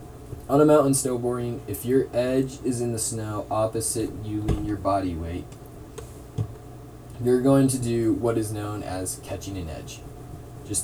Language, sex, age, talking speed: English, male, 20-39, 160 wpm